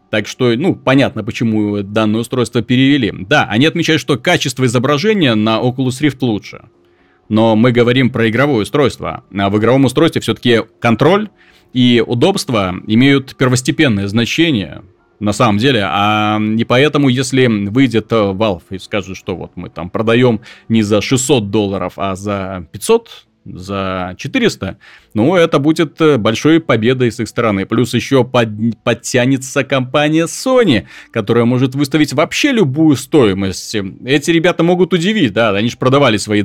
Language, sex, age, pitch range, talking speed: Russian, male, 30-49, 110-145 Hz, 145 wpm